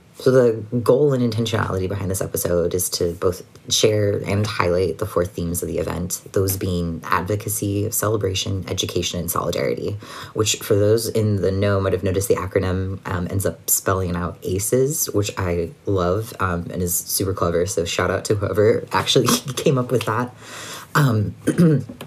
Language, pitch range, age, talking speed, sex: English, 95-115 Hz, 20-39, 175 wpm, female